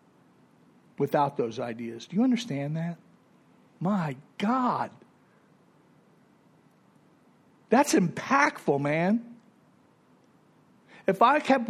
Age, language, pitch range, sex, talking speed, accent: 50-69, English, 155-230 Hz, male, 75 wpm, American